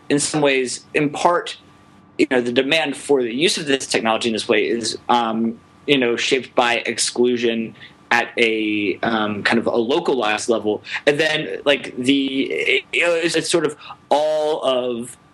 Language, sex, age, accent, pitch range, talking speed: English, male, 20-39, American, 115-145 Hz, 175 wpm